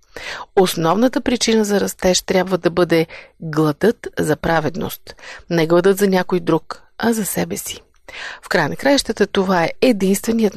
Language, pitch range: Bulgarian, 170-220 Hz